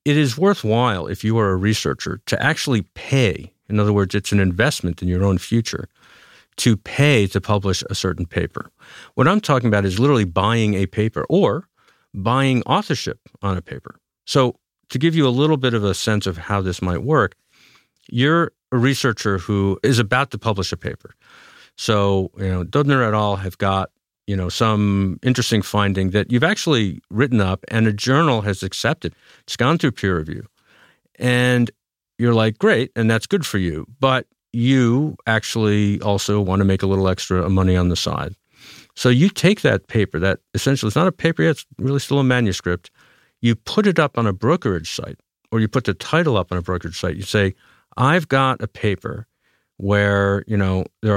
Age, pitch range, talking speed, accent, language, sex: 50-69, 95-130 Hz, 190 wpm, American, English, male